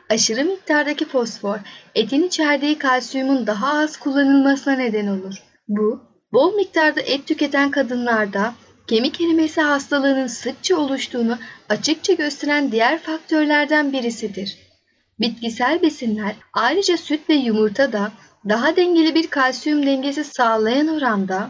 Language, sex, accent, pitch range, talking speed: Turkish, female, native, 220-300 Hz, 115 wpm